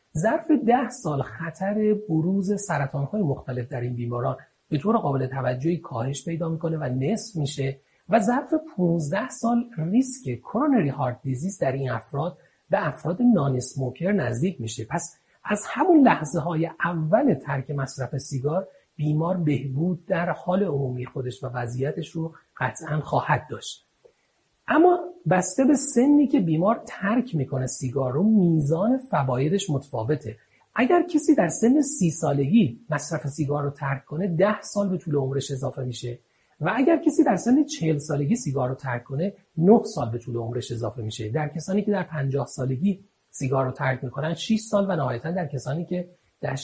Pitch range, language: 135-200 Hz, Persian